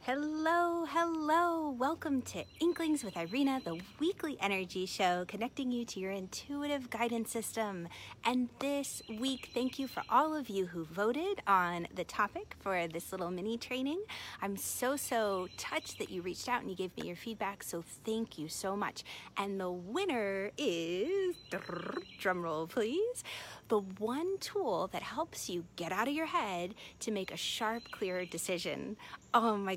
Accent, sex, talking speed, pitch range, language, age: American, female, 165 wpm, 185-270 Hz, English, 30-49